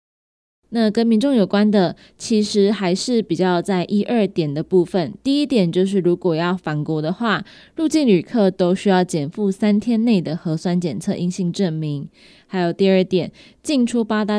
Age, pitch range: 20-39, 170-210 Hz